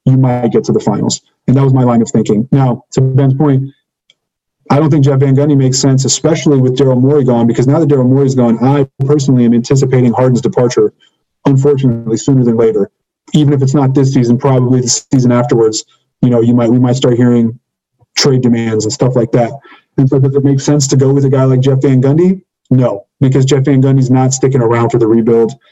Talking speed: 225 wpm